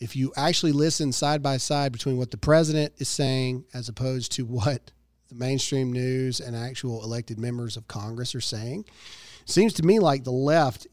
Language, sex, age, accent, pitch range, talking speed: English, male, 40-59, American, 130-175 Hz, 180 wpm